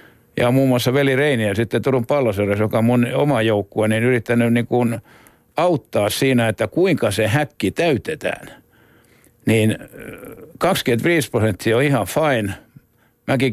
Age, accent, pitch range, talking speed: 60-79, native, 110-140 Hz, 140 wpm